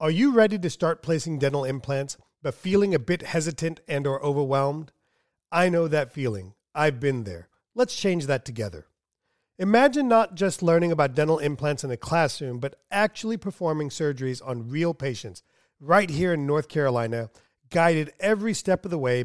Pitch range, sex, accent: 135-185 Hz, male, American